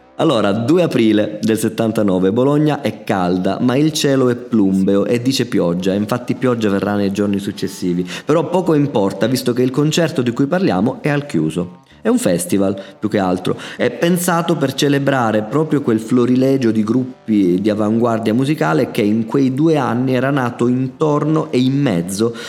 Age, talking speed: 30-49, 170 wpm